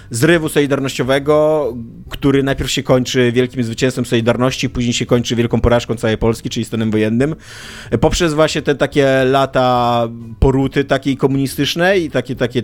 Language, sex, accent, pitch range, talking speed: Polish, male, native, 115-135 Hz, 140 wpm